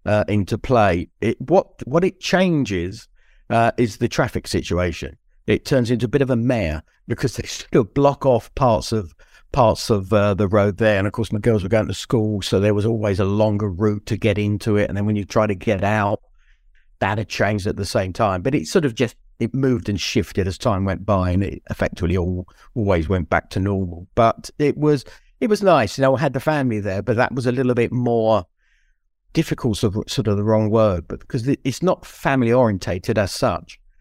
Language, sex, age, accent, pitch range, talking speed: English, male, 50-69, British, 100-120 Hz, 220 wpm